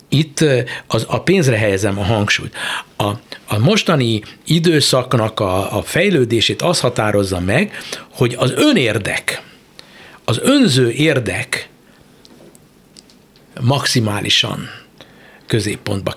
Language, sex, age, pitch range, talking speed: Hungarian, male, 60-79, 115-165 Hz, 95 wpm